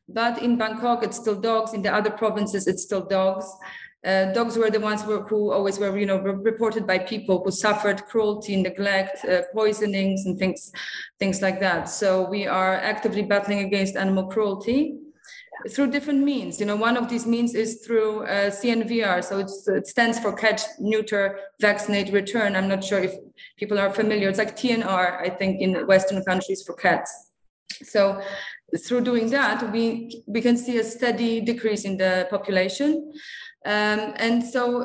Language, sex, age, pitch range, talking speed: English, female, 20-39, 195-235 Hz, 175 wpm